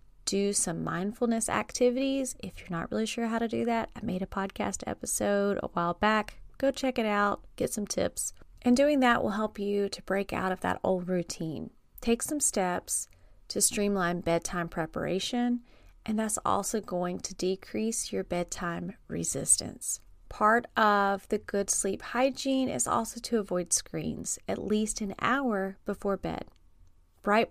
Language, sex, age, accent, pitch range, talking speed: English, female, 30-49, American, 185-235 Hz, 165 wpm